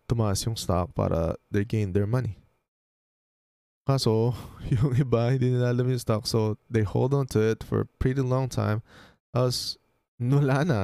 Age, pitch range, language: 20-39, 95-120 Hz, Filipino